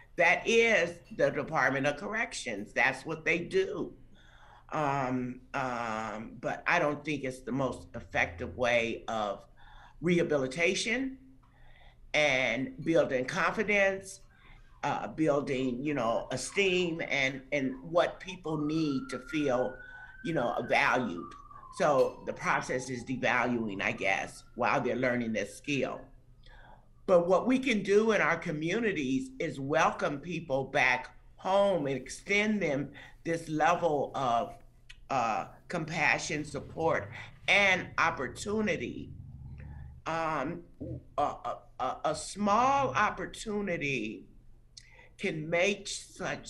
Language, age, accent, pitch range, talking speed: English, 50-69, American, 125-185 Hz, 110 wpm